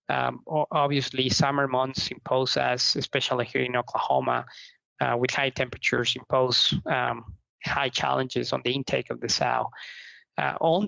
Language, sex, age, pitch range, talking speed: English, male, 20-39, 125-145 Hz, 145 wpm